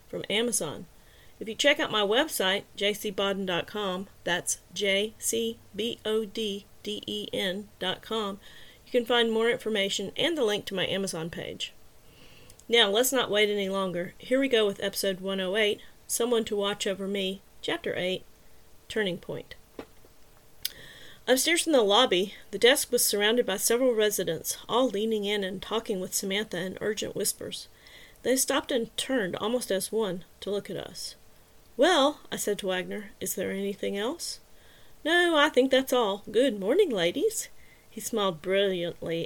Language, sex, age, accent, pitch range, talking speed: English, female, 40-59, American, 190-245 Hz, 145 wpm